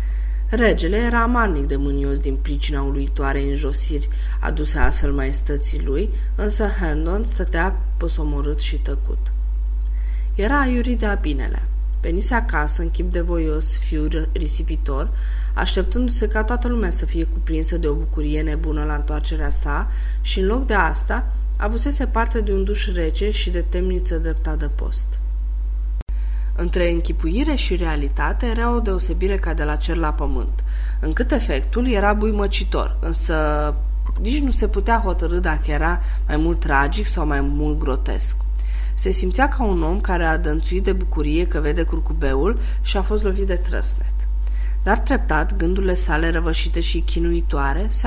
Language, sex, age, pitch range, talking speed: Romanian, female, 20-39, 140-190 Hz, 150 wpm